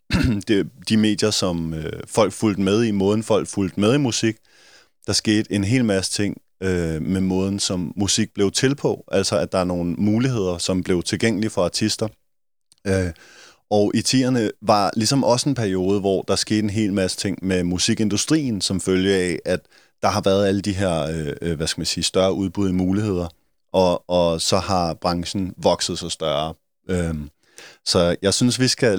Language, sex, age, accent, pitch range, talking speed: Danish, male, 30-49, native, 95-110 Hz, 175 wpm